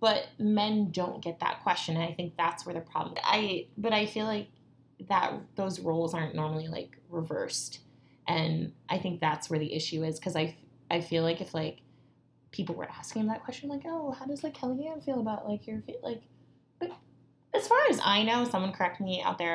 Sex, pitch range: female, 155-210 Hz